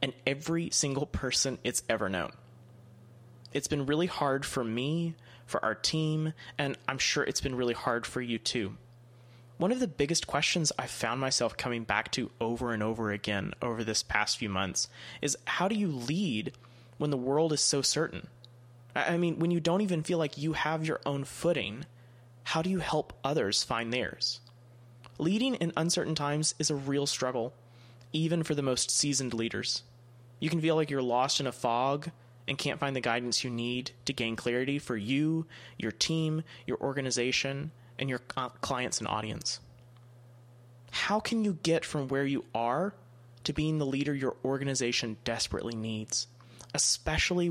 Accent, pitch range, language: American, 120-155 Hz, English